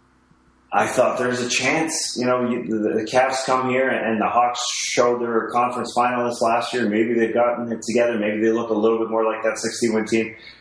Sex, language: male, English